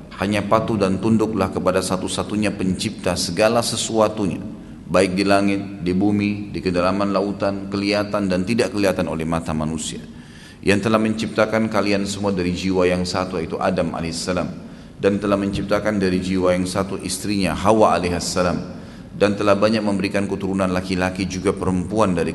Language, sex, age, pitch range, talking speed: Indonesian, male, 30-49, 90-100 Hz, 150 wpm